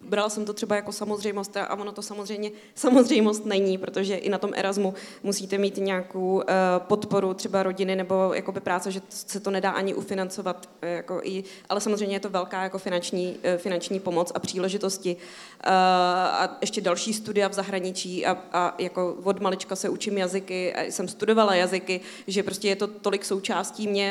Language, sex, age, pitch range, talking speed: Czech, female, 20-39, 185-200 Hz, 170 wpm